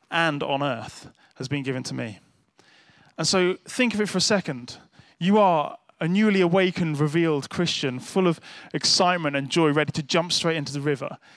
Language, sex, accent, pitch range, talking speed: English, male, British, 150-190 Hz, 185 wpm